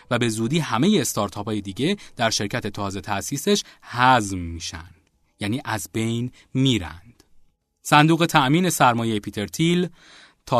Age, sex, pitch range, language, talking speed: 30-49, male, 105-135 Hz, Persian, 130 wpm